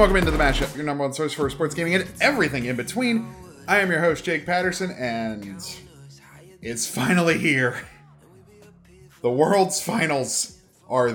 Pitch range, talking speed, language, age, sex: 115-170 Hz, 155 wpm, English, 30-49, male